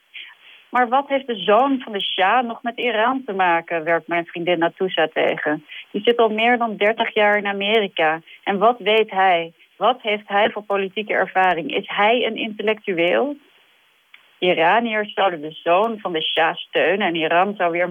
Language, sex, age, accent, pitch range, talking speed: Dutch, female, 30-49, Dutch, 170-215 Hz, 180 wpm